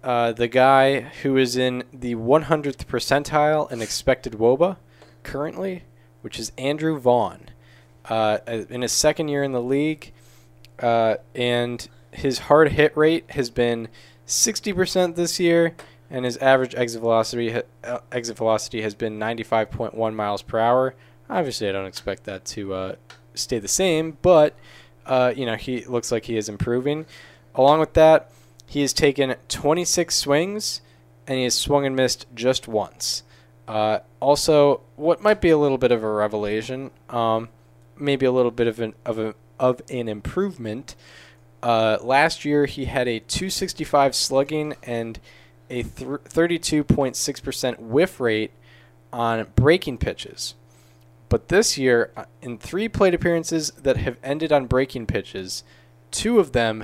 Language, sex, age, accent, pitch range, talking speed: English, male, 20-39, American, 110-145 Hz, 145 wpm